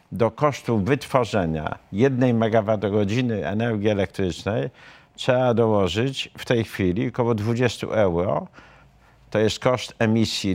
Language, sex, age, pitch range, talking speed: Polish, male, 50-69, 90-115 Hz, 110 wpm